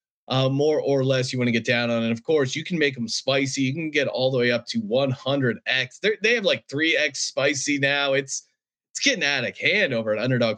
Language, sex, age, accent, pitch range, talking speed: English, male, 30-49, American, 120-150 Hz, 245 wpm